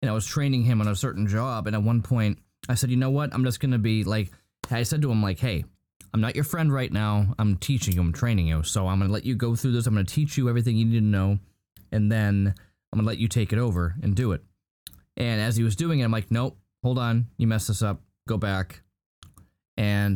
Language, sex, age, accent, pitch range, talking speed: English, male, 20-39, American, 95-120 Hz, 275 wpm